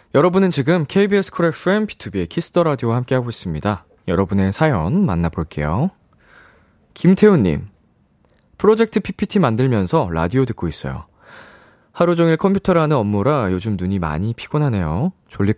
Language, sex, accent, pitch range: Korean, male, native, 90-150 Hz